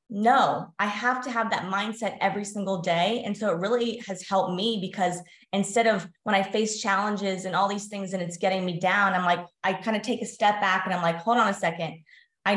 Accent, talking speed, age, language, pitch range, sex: American, 240 wpm, 20-39, English, 180-215 Hz, female